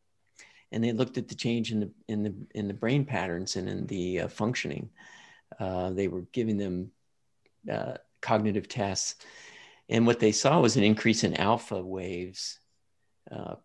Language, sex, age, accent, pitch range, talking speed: English, male, 50-69, American, 95-115 Hz, 165 wpm